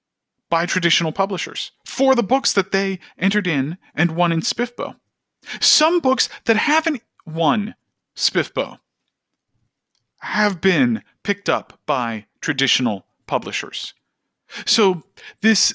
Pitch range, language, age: 160-220 Hz, English, 40-59